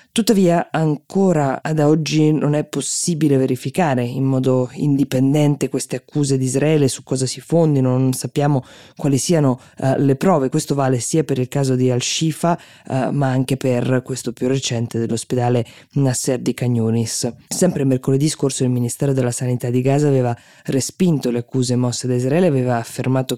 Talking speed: 160 wpm